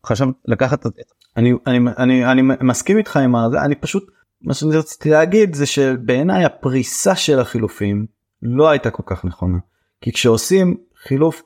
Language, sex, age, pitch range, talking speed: Hebrew, male, 30-49, 115-165 Hz, 150 wpm